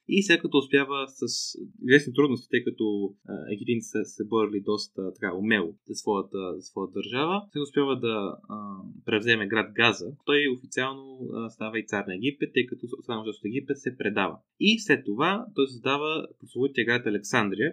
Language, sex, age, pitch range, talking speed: Bulgarian, male, 20-39, 110-145 Hz, 165 wpm